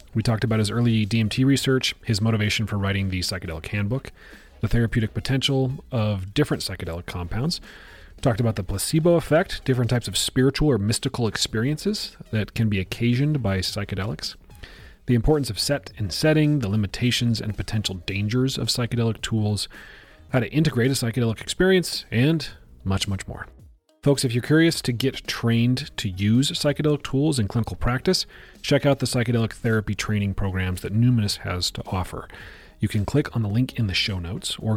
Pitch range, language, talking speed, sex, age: 100-130 Hz, English, 175 wpm, male, 30-49